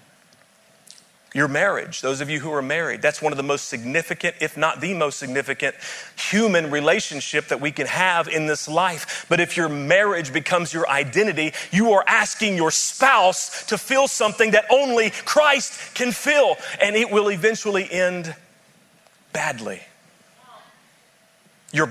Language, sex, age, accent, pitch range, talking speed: English, male, 40-59, American, 160-230 Hz, 150 wpm